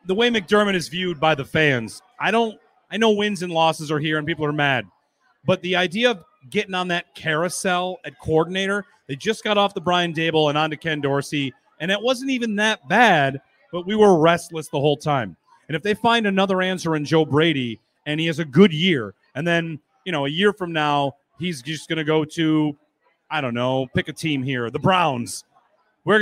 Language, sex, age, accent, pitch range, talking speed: English, male, 30-49, American, 155-200 Hz, 215 wpm